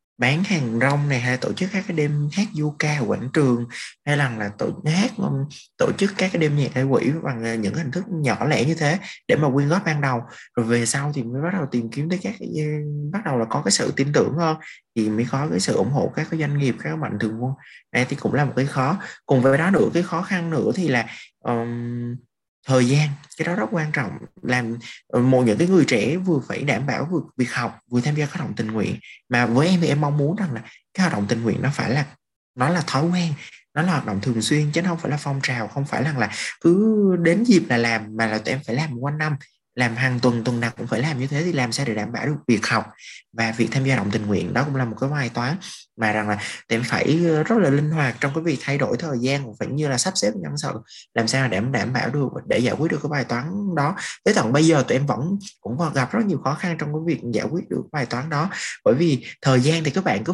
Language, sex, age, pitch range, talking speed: Vietnamese, male, 20-39, 125-165 Hz, 275 wpm